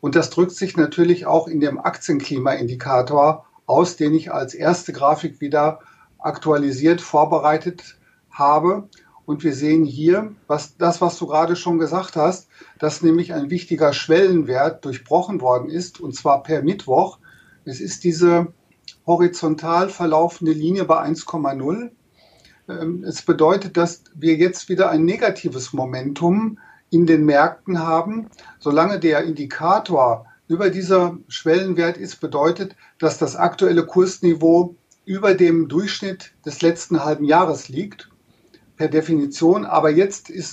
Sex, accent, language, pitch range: male, German, German, 155-175 Hz